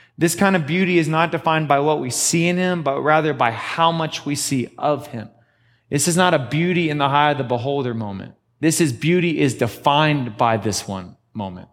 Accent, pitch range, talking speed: American, 120-160 Hz, 220 wpm